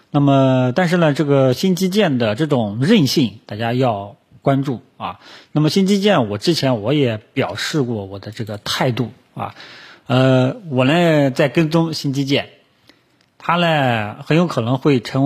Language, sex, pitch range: Chinese, male, 110-145 Hz